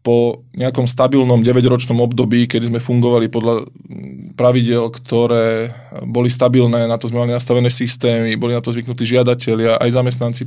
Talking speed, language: 150 wpm, Slovak